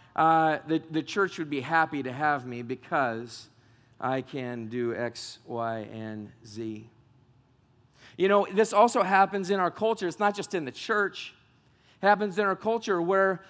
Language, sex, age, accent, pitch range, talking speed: English, male, 40-59, American, 145-195 Hz, 170 wpm